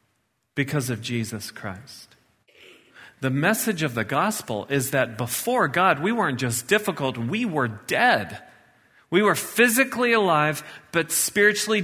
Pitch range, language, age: 150-215 Hz, English, 40-59